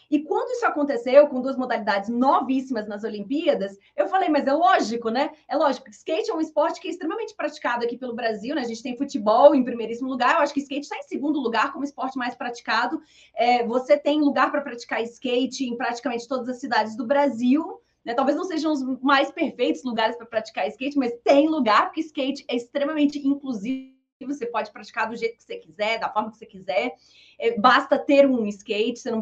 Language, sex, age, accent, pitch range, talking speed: Portuguese, female, 20-39, Brazilian, 235-290 Hz, 205 wpm